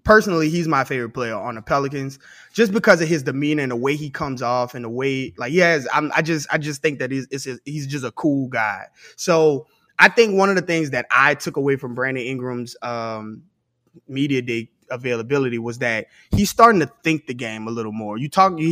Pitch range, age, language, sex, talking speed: 130-160 Hz, 20-39, English, male, 220 wpm